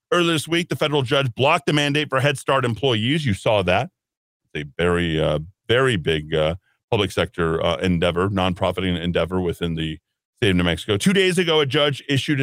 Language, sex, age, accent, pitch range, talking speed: English, male, 40-59, American, 110-150 Hz, 195 wpm